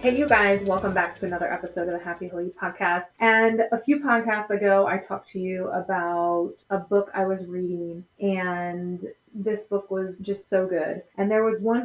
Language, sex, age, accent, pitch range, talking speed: English, female, 20-39, American, 175-200 Hz, 195 wpm